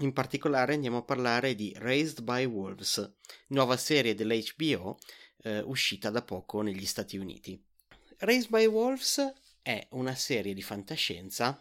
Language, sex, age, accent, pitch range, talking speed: Italian, male, 30-49, native, 110-140 Hz, 140 wpm